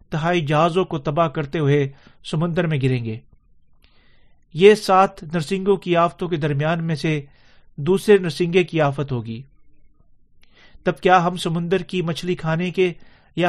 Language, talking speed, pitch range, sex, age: Urdu, 145 wpm, 150-180 Hz, male, 40-59